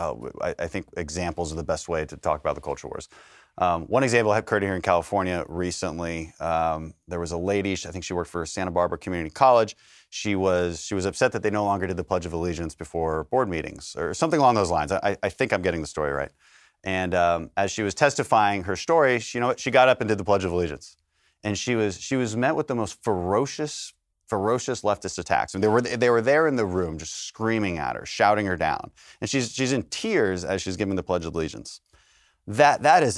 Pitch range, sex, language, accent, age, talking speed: 85-115 Hz, male, English, American, 30-49, 240 wpm